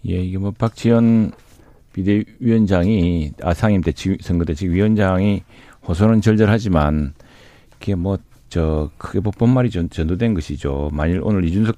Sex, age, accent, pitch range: male, 40-59, native, 90-115 Hz